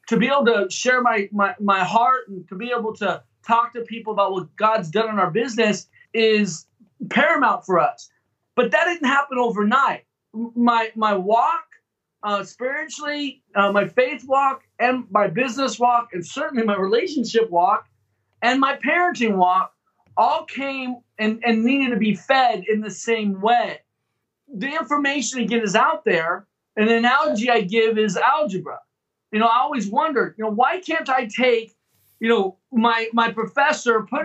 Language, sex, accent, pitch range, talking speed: English, male, American, 210-260 Hz, 170 wpm